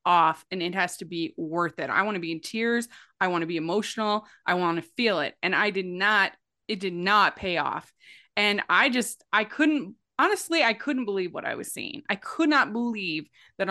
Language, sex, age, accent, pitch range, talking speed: English, female, 20-39, American, 195-250 Hz, 225 wpm